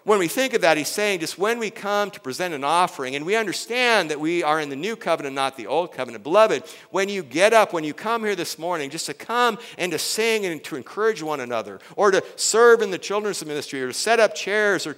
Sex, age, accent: male, 50-69, American